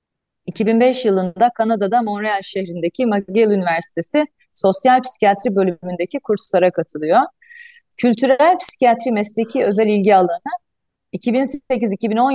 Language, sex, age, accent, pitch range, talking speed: Turkish, female, 30-49, native, 185-255 Hz, 90 wpm